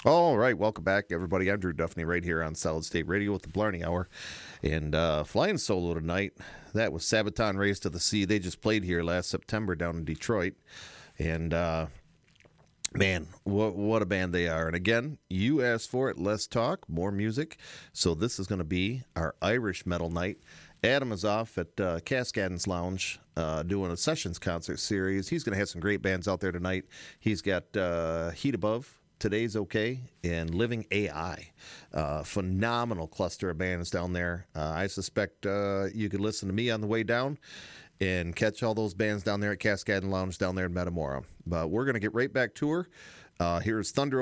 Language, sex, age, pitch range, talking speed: English, male, 40-59, 85-110 Hz, 200 wpm